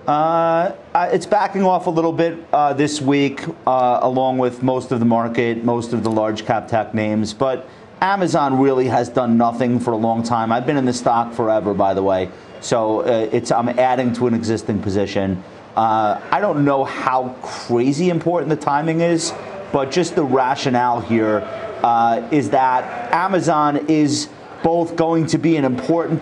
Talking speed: 175 wpm